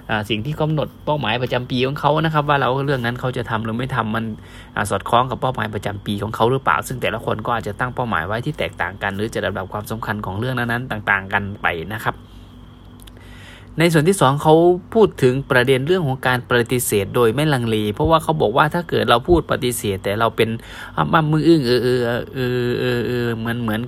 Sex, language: male, Thai